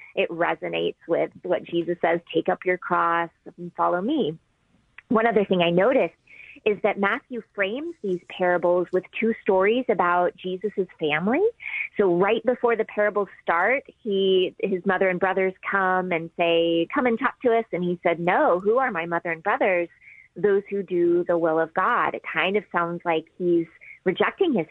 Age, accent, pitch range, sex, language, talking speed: 30-49, American, 170-230 Hz, female, English, 180 wpm